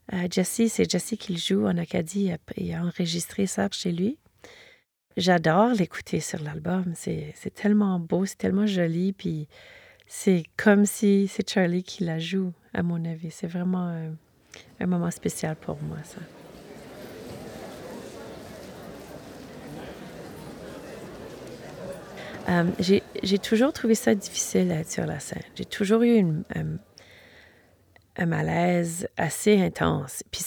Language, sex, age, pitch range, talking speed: French, female, 30-49, 165-200 Hz, 130 wpm